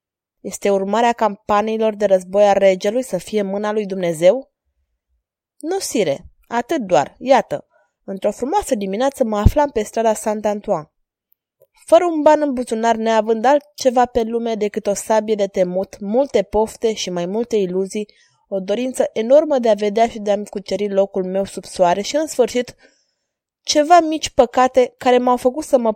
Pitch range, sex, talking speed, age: 195-250 Hz, female, 160 wpm, 20-39